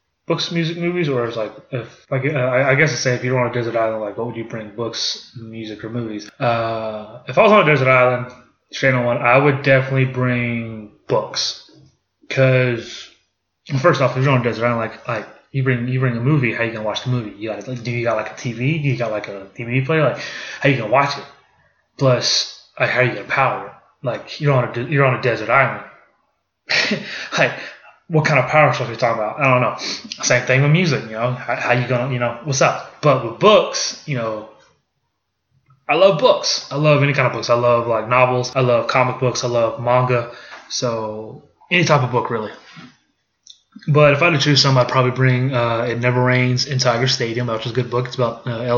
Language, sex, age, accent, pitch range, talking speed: English, male, 20-39, American, 120-135 Hz, 240 wpm